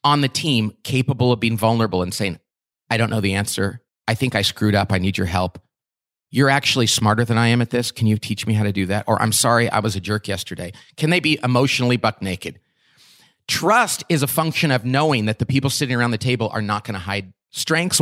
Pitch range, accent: 105-145 Hz, American